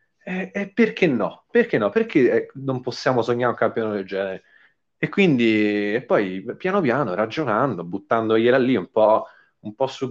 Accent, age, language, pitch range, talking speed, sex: native, 30-49, Italian, 100-140 Hz, 165 wpm, male